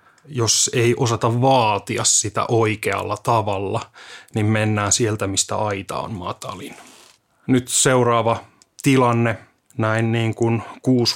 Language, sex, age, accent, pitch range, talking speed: Finnish, male, 30-49, native, 110-130 Hz, 115 wpm